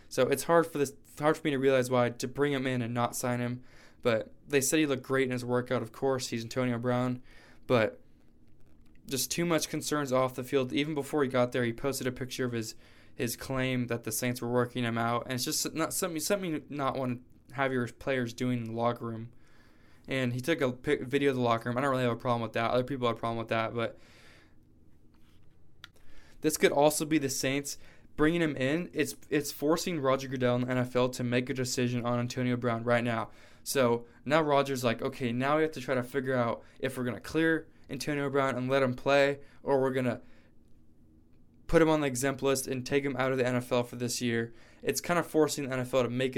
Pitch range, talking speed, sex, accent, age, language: 120-140 Hz, 235 wpm, male, American, 20-39, English